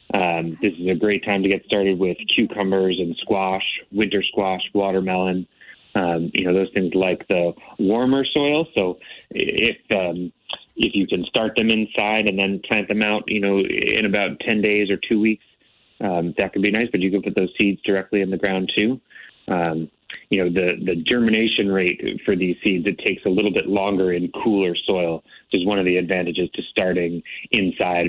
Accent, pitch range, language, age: American, 90-110 Hz, English, 30-49